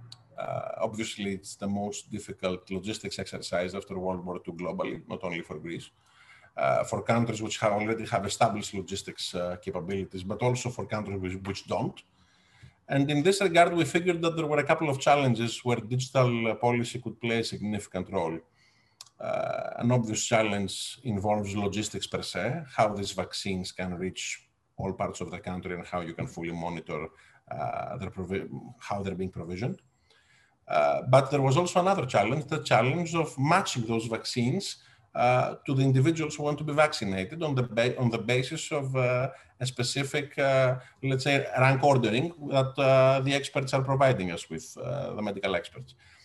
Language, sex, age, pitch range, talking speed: English, male, 50-69, 100-135 Hz, 175 wpm